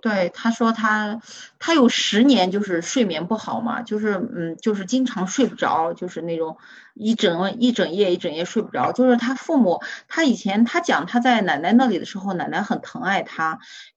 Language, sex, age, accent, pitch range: Chinese, female, 30-49, native, 195-255 Hz